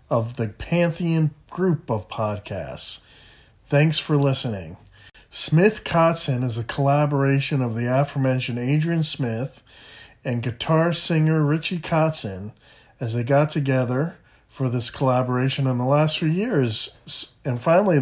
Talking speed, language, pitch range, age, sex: 125 wpm, English, 115-145 Hz, 40-59, male